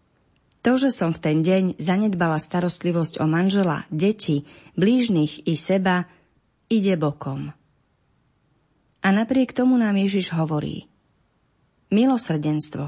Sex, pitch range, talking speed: female, 155-195 Hz, 105 wpm